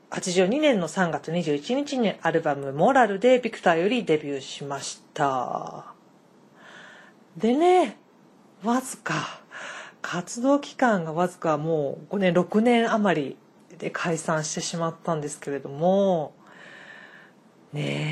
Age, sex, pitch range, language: 40-59, female, 160-225 Hz, Japanese